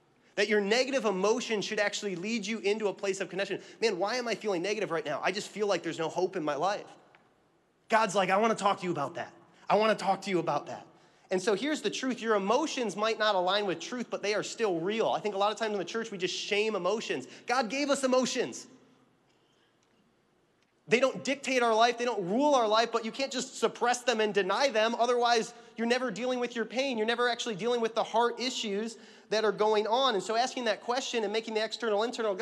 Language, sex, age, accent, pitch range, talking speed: English, male, 30-49, American, 195-240 Hz, 240 wpm